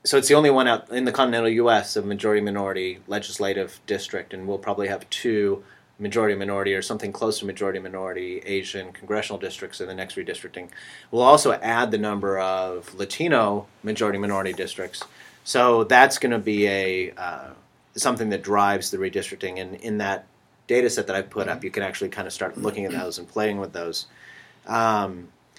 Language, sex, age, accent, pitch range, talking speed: English, male, 30-49, American, 100-145 Hz, 180 wpm